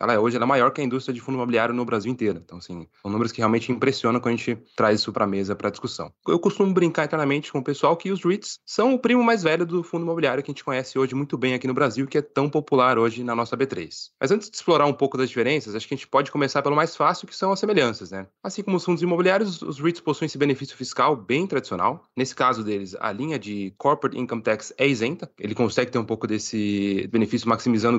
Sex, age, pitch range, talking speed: male, 20-39, 115-160 Hz, 260 wpm